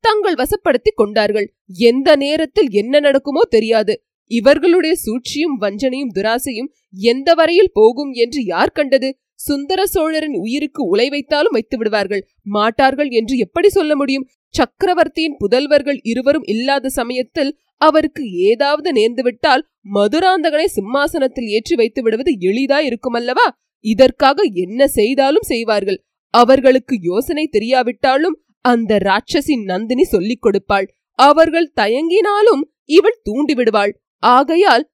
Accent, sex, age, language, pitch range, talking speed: native, female, 20-39, Tamil, 235-325 Hz, 75 wpm